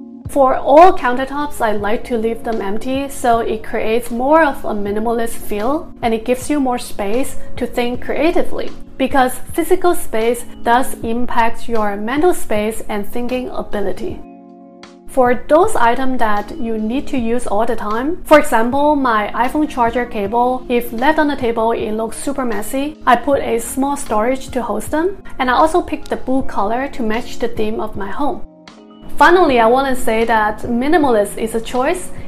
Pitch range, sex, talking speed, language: 225-275 Hz, female, 175 wpm, English